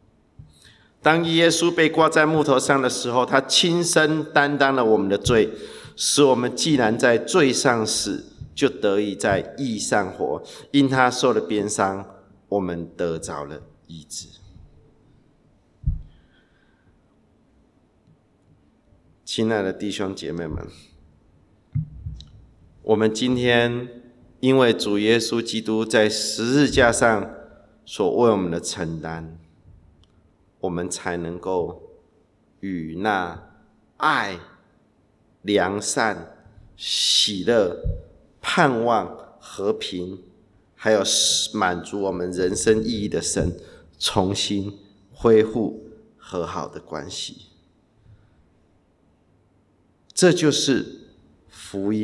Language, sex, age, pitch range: English, male, 50-69, 90-125 Hz